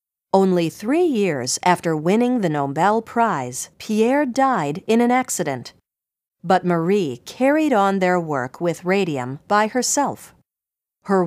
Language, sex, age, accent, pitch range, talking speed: English, female, 40-59, American, 155-220 Hz, 130 wpm